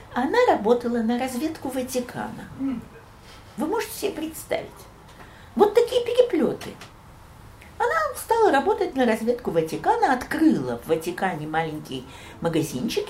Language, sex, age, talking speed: Russian, female, 50-69, 105 wpm